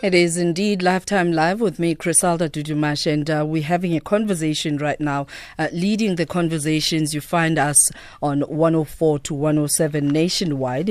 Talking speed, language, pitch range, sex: 165 wpm, English, 140-165 Hz, female